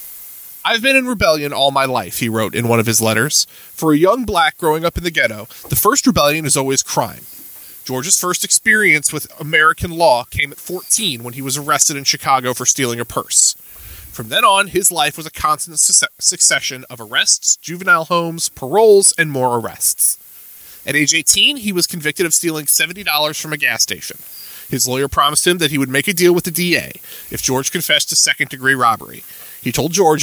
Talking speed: 200 wpm